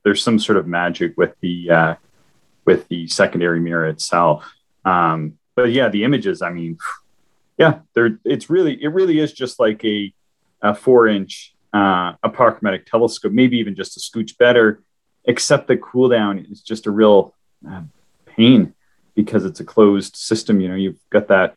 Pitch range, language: 90-115 Hz, English